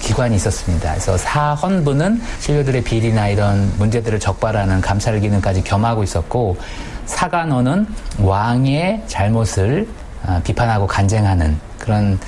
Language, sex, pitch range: Korean, male, 95-125 Hz